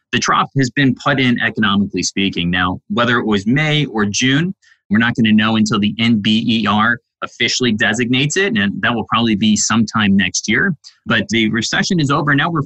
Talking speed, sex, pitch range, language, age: 195 wpm, male, 105-130 Hz, English, 20-39